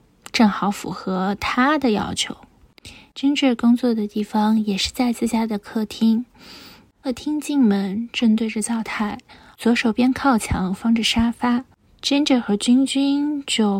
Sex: female